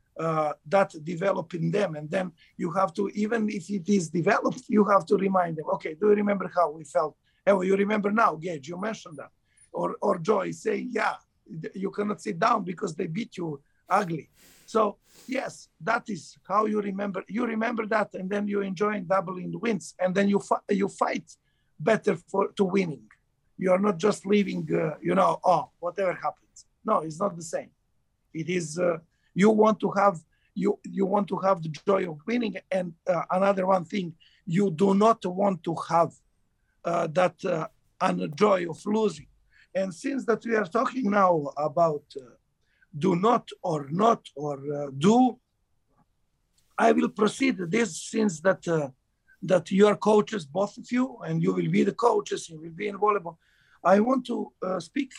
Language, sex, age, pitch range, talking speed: English, male, 50-69, 170-210 Hz, 190 wpm